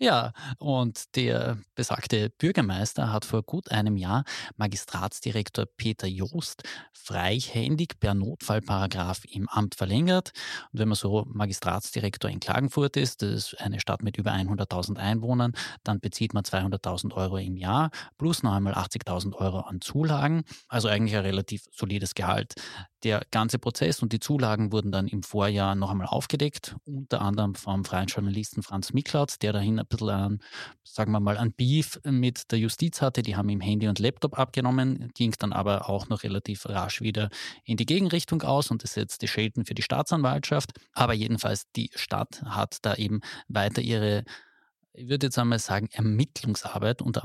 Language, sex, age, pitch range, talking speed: German, male, 30-49, 100-125 Hz, 165 wpm